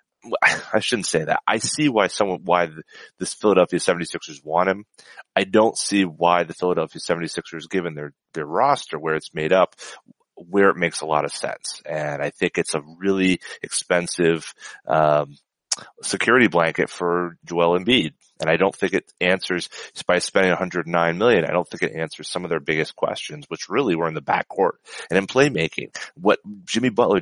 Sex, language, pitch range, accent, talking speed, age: male, English, 80-100 Hz, American, 185 wpm, 30-49